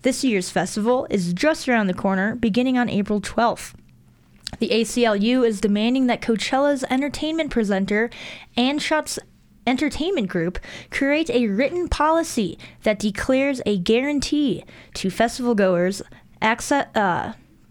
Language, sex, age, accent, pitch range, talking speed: English, female, 20-39, American, 205-260 Hz, 125 wpm